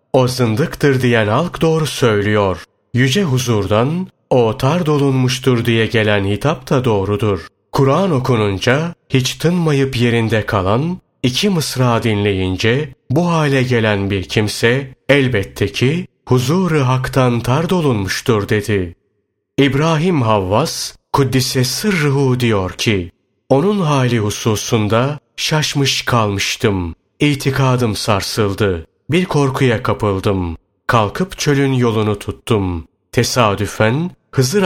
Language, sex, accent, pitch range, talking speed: Turkish, male, native, 105-140 Hz, 100 wpm